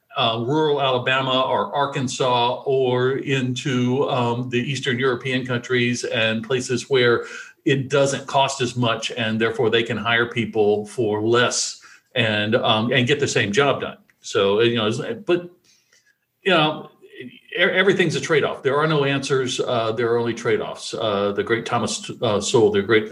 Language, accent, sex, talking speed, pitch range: English, American, male, 160 wpm, 115-140 Hz